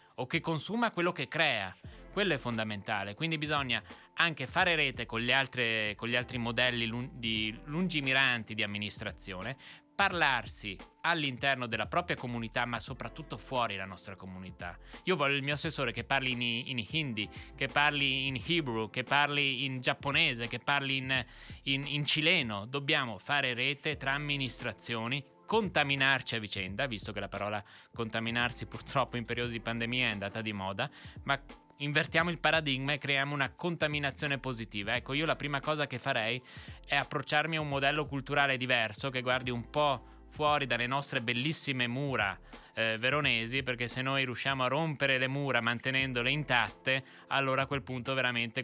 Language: Italian